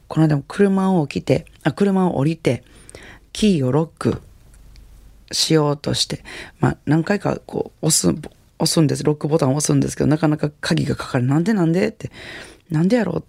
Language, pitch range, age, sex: Japanese, 135-170 Hz, 40-59, female